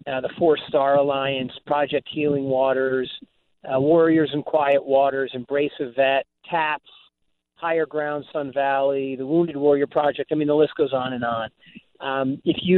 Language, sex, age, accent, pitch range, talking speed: English, male, 40-59, American, 135-155 Hz, 170 wpm